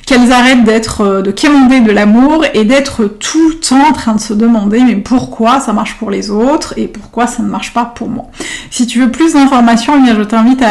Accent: French